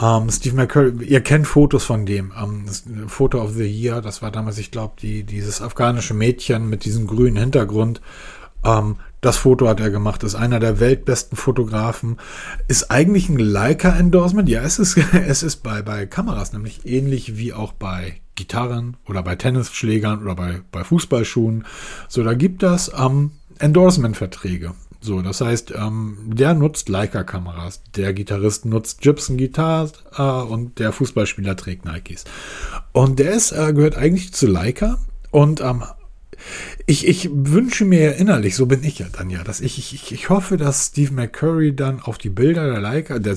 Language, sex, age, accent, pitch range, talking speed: German, male, 40-59, German, 105-145 Hz, 165 wpm